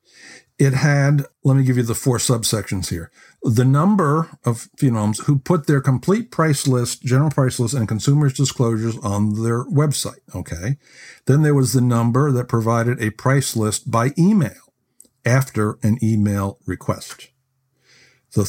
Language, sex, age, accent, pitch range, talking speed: English, male, 50-69, American, 110-135 Hz, 155 wpm